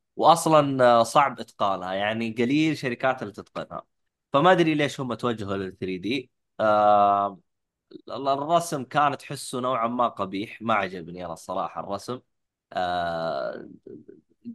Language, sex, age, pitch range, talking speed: Arabic, male, 20-39, 115-160 Hz, 115 wpm